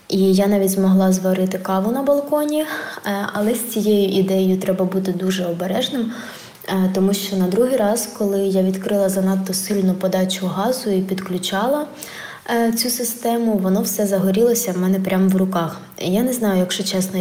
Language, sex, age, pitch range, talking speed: Ukrainian, female, 20-39, 185-215 Hz, 155 wpm